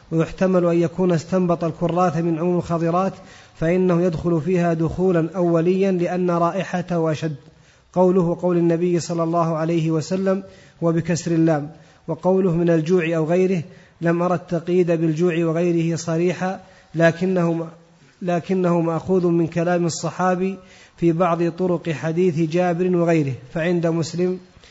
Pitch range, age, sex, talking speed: 165-180 Hz, 30-49, male, 120 wpm